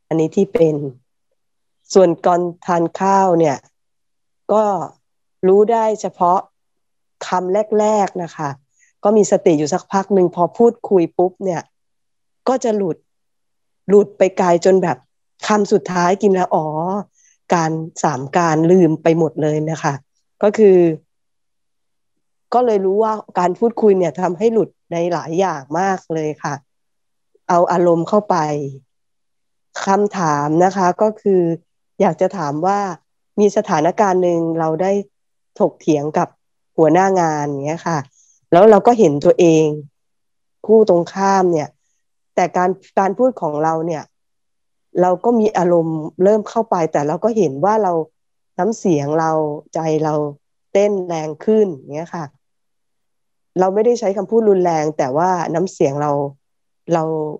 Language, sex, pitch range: Thai, female, 155-195 Hz